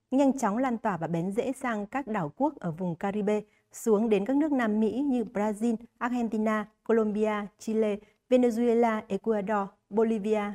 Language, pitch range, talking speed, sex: Vietnamese, 195-240 Hz, 160 wpm, female